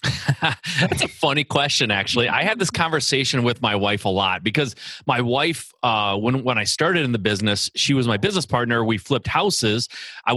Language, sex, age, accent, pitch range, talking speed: English, male, 30-49, American, 115-160 Hz, 195 wpm